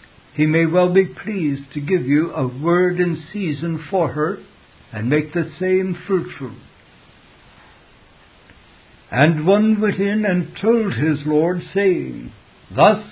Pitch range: 145-185 Hz